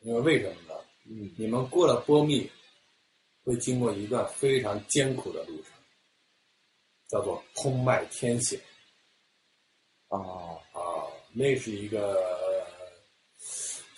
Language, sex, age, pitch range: Chinese, male, 50-69, 105-135 Hz